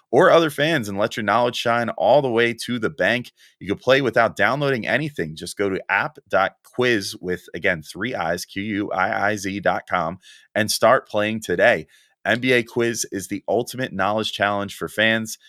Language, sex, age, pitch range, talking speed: English, male, 30-49, 90-115 Hz, 165 wpm